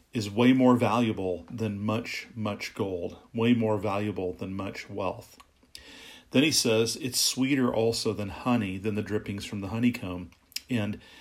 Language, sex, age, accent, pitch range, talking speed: English, male, 40-59, American, 100-125 Hz, 155 wpm